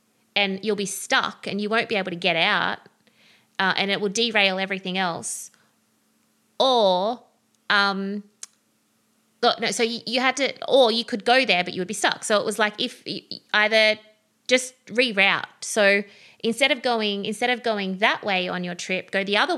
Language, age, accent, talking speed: English, 20-39, Australian, 180 wpm